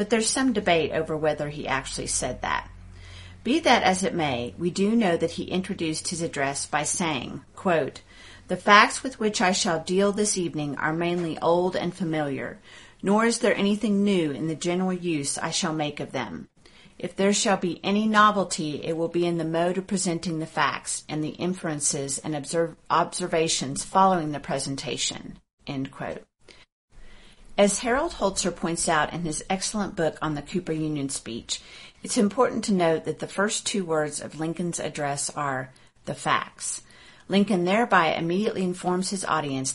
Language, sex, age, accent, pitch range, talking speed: English, female, 40-59, American, 155-195 Hz, 175 wpm